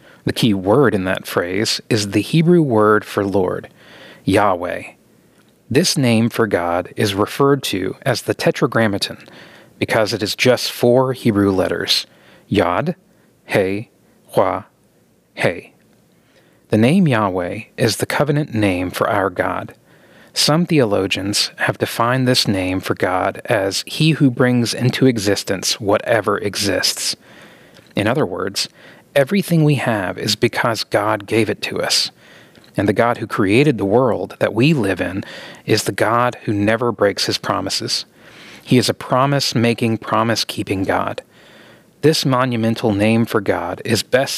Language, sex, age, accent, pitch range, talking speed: English, male, 30-49, American, 105-130 Hz, 140 wpm